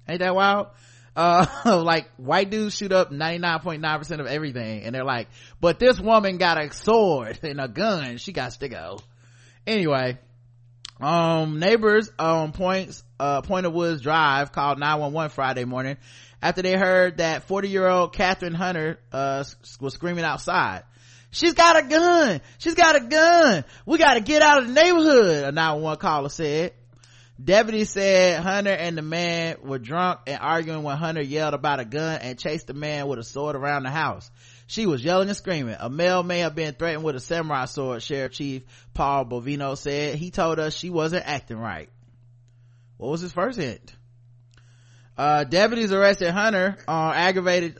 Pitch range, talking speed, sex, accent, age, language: 130-180 Hz, 180 wpm, male, American, 20-39, English